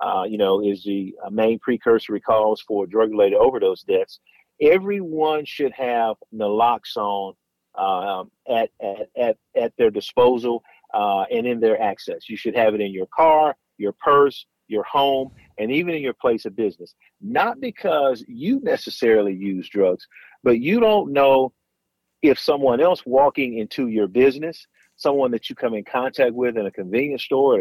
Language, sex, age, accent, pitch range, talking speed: English, male, 40-59, American, 120-160 Hz, 165 wpm